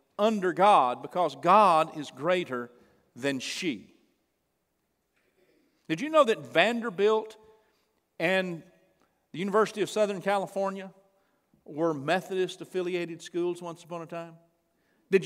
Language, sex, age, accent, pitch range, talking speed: English, male, 50-69, American, 165-220 Hz, 105 wpm